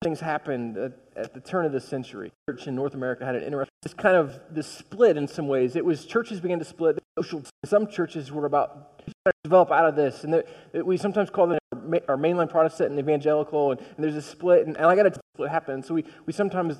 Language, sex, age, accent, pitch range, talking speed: English, male, 20-39, American, 145-185 Hz, 230 wpm